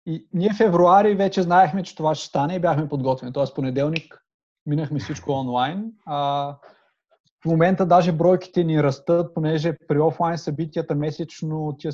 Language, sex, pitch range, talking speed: Bulgarian, male, 130-155 Hz, 150 wpm